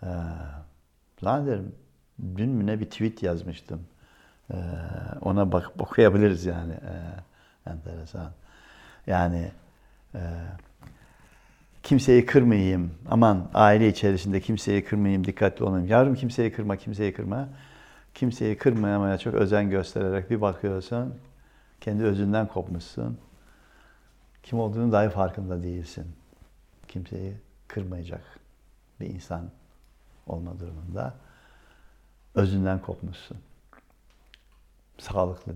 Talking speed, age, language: 90 wpm, 60-79, Turkish